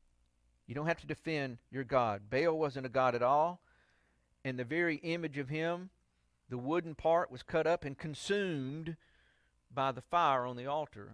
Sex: male